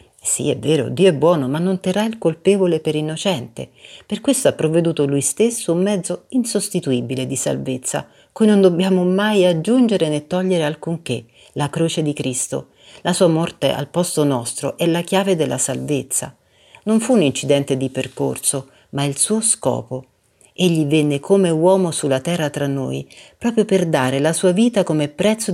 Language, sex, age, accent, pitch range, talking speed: Italian, female, 50-69, native, 140-180 Hz, 170 wpm